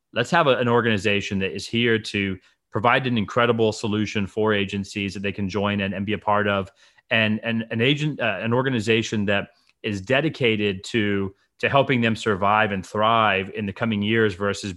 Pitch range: 100-110 Hz